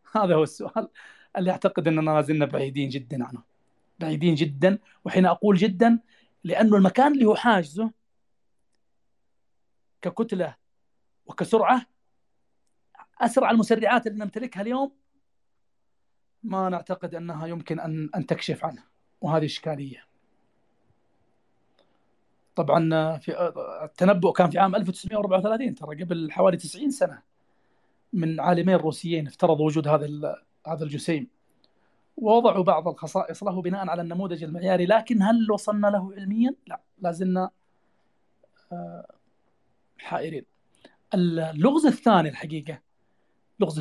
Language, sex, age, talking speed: Arabic, male, 30-49, 105 wpm